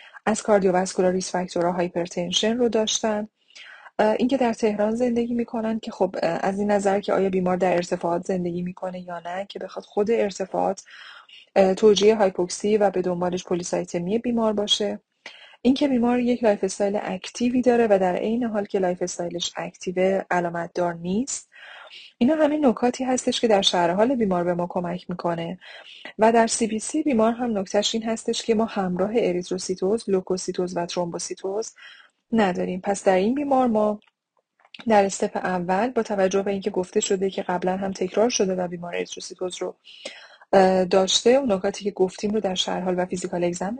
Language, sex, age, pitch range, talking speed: Persian, female, 30-49, 185-225 Hz, 160 wpm